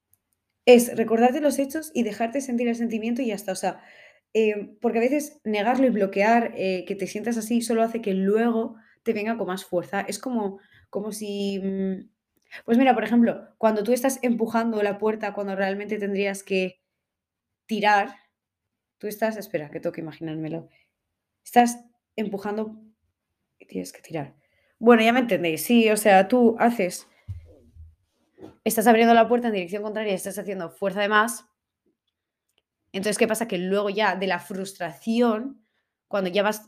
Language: Spanish